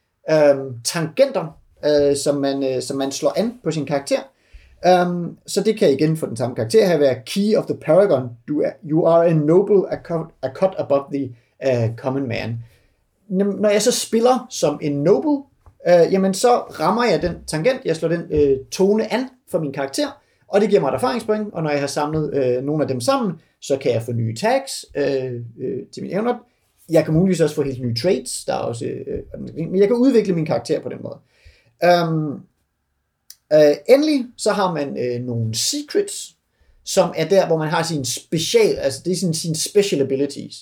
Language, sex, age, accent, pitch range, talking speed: Danish, male, 30-49, native, 135-190 Hz, 200 wpm